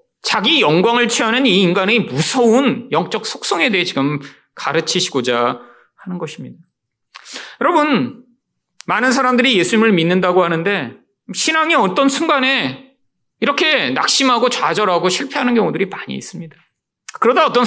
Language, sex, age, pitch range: Korean, male, 30-49, 165-270 Hz